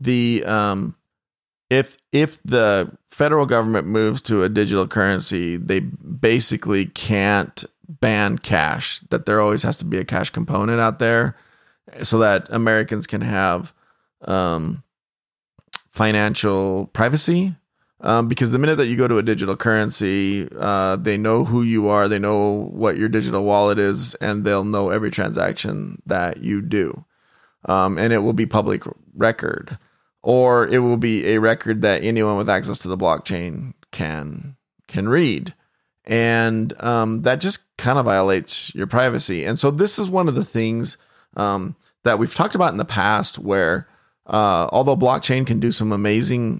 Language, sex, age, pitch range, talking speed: English, male, 30-49, 100-120 Hz, 160 wpm